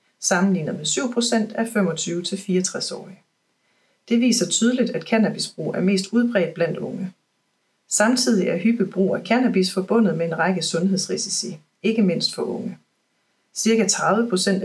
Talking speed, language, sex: 130 wpm, Danish, female